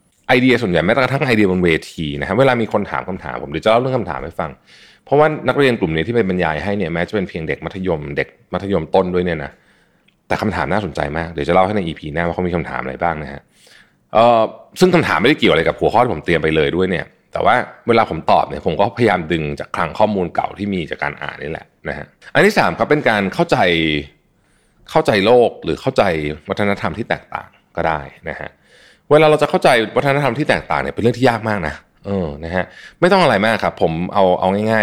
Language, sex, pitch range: Thai, male, 80-115 Hz